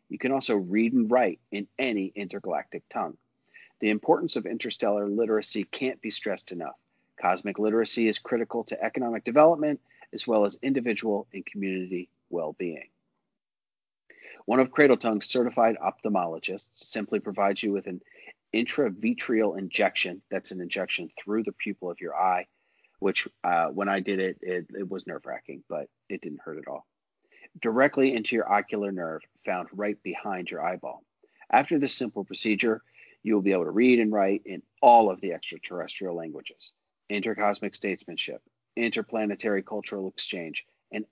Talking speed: 155 wpm